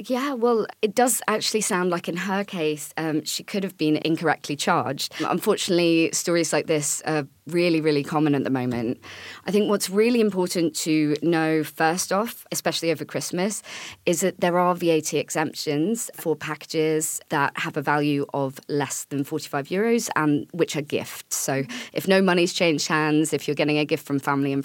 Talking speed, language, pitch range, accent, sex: 185 wpm, English, 145-175 Hz, British, female